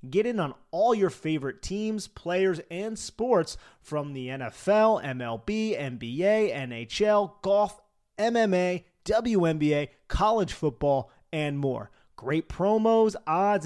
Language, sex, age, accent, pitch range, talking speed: English, male, 30-49, American, 140-205 Hz, 115 wpm